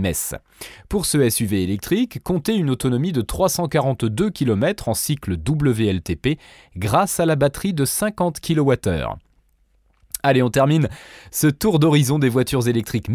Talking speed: 130 wpm